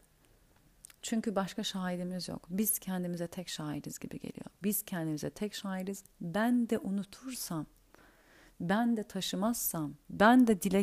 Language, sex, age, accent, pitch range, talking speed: Turkish, female, 40-59, native, 170-215 Hz, 125 wpm